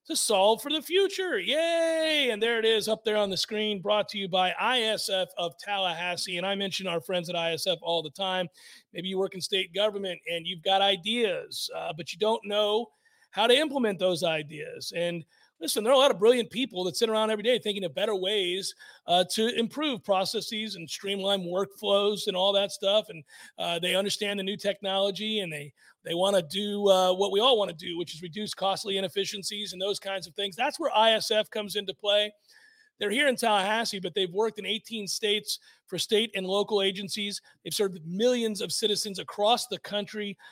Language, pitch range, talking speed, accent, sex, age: English, 185-220 Hz, 205 wpm, American, male, 40-59